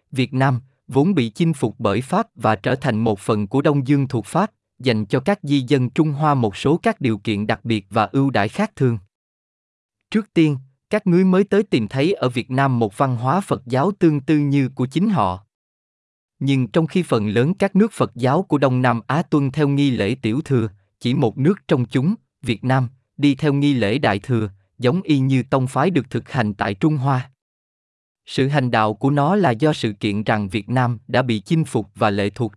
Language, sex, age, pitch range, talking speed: Vietnamese, male, 20-39, 110-150 Hz, 225 wpm